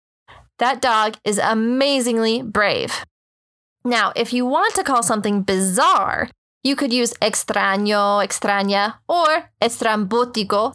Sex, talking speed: female, 110 wpm